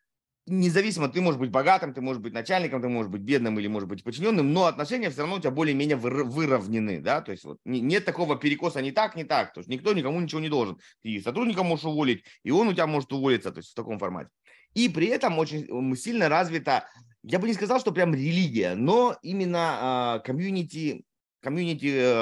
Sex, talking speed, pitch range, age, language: male, 205 wpm, 120-180 Hz, 30-49, Russian